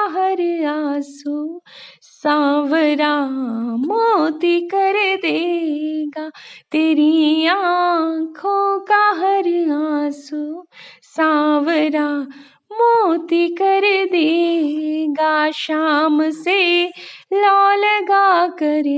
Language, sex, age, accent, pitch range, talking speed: Hindi, female, 20-39, native, 310-415 Hz, 45 wpm